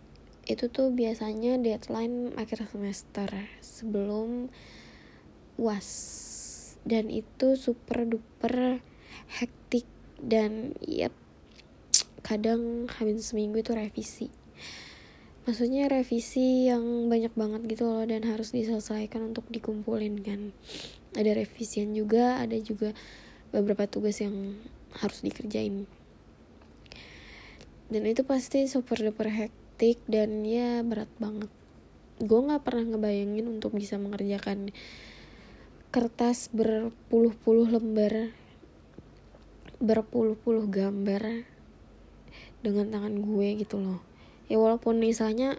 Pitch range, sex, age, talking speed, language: 210-235 Hz, female, 10-29, 95 wpm, Indonesian